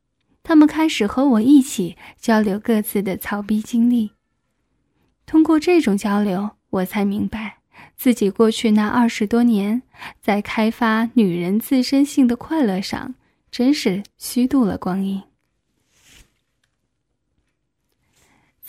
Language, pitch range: Chinese, 210-260 Hz